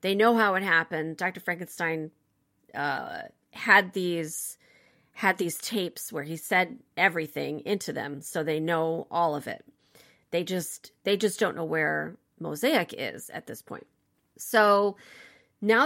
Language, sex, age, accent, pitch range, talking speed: English, female, 40-59, American, 165-220 Hz, 150 wpm